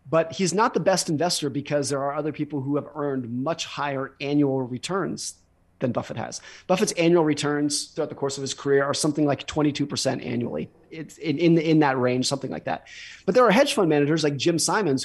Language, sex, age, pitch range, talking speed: English, male, 30-49, 135-175 Hz, 210 wpm